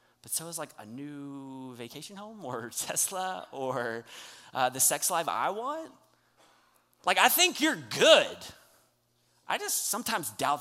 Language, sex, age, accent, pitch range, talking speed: English, male, 30-49, American, 120-180 Hz, 145 wpm